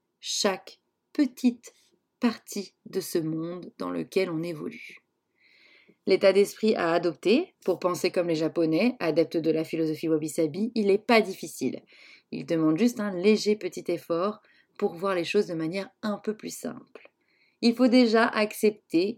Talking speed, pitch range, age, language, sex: 155 wpm, 170-215 Hz, 30-49, French, female